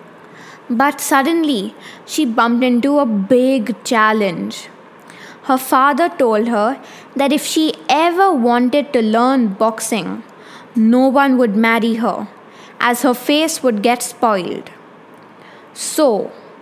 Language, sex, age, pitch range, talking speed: English, female, 20-39, 230-275 Hz, 115 wpm